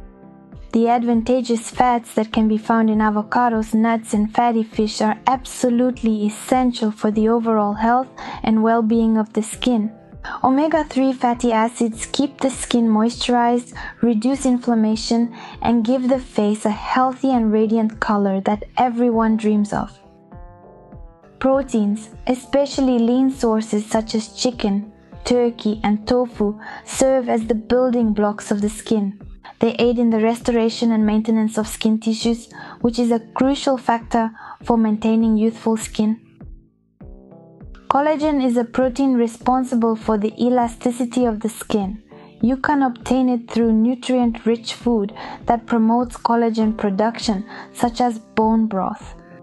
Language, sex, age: English, female, 20-39